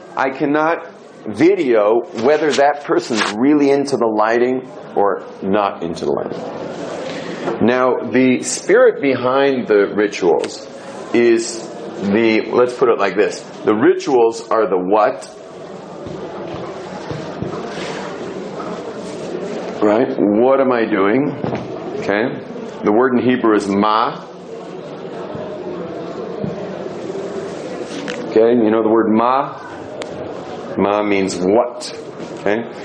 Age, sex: 50-69, male